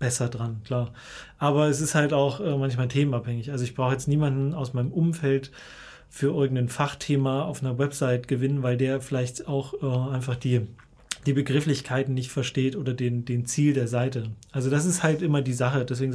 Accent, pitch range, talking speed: German, 125-150 Hz, 190 wpm